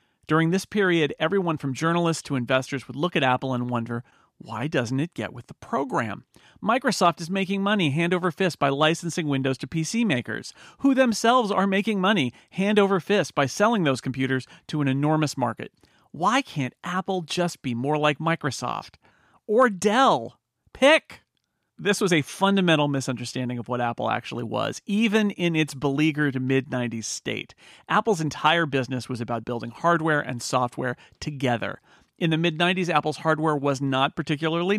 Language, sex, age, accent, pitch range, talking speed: English, male, 40-59, American, 130-185 Hz, 165 wpm